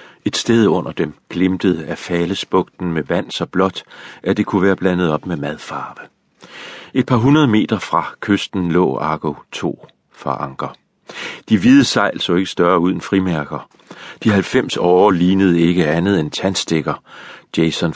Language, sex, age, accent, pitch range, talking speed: Danish, male, 40-59, native, 80-95 Hz, 160 wpm